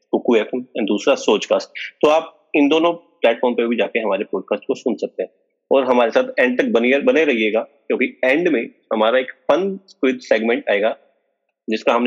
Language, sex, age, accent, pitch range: Hindi, male, 30-49, native, 110-170 Hz